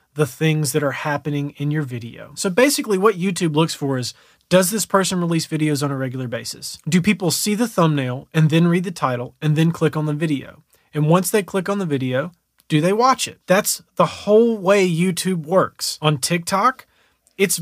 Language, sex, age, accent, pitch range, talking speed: English, male, 30-49, American, 150-195 Hz, 205 wpm